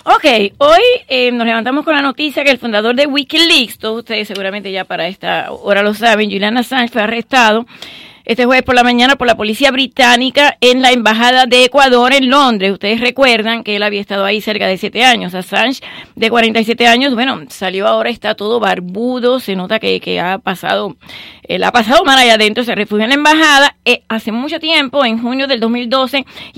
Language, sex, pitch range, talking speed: English, female, 225-275 Hz, 205 wpm